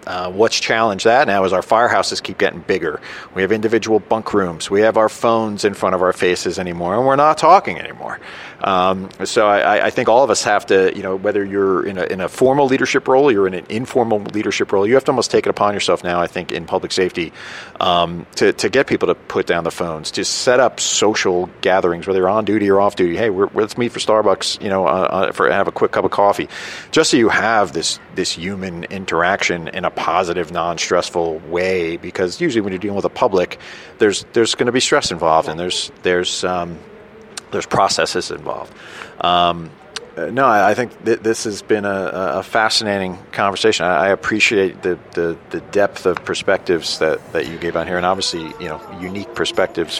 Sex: male